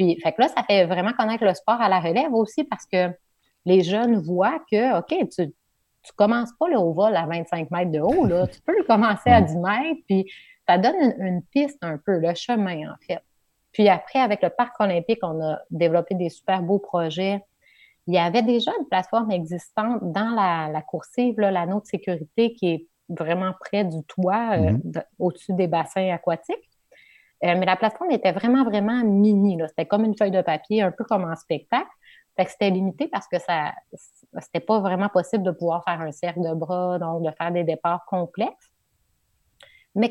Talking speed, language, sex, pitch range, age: 205 wpm, French, female, 170-215 Hz, 30-49